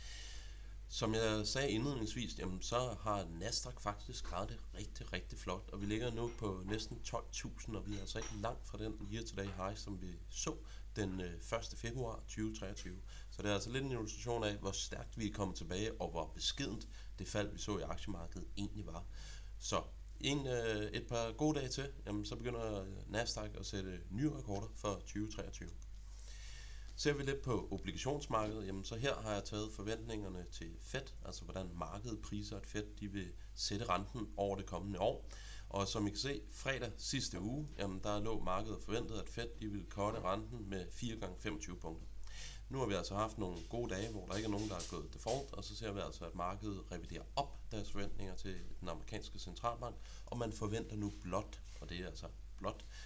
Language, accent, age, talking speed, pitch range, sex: Danish, native, 30-49, 195 wpm, 95-110 Hz, male